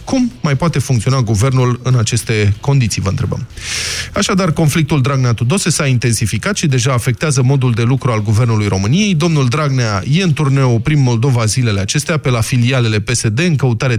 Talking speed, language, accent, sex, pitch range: 170 wpm, Romanian, native, male, 115-155 Hz